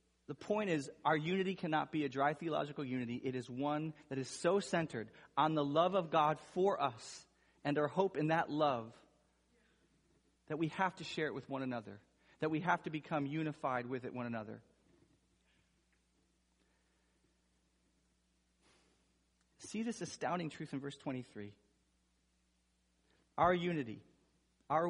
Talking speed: 140 wpm